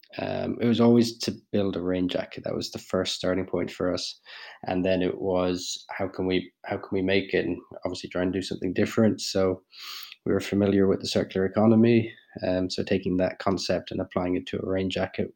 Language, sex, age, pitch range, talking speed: English, male, 20-39, 90-100 Hz, 220 wpm